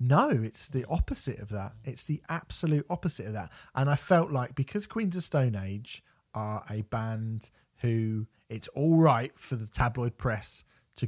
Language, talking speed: English, 180 wpm